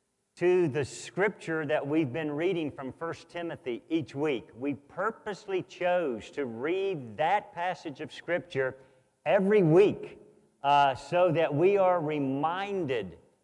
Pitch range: 135-180 Hz